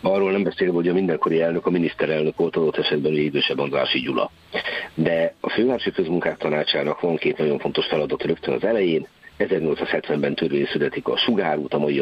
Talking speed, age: 180 wpm, 50-69